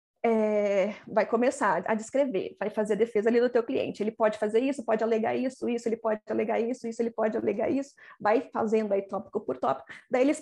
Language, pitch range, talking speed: English, 215-280 Hz, 220 wpm